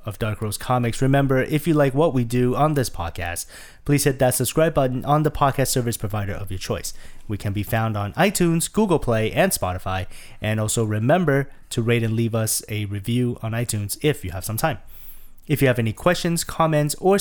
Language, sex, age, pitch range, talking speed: English, male, 30-49, 100-140 Hz, 215 wpm